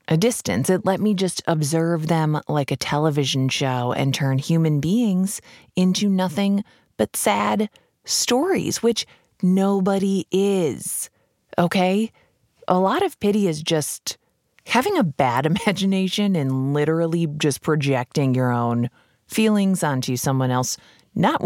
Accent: American